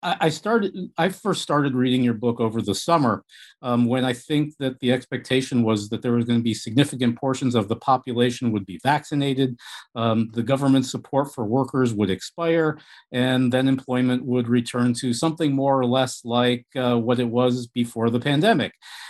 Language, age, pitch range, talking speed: English, 50-69, 120-160 Hz, 185 wpm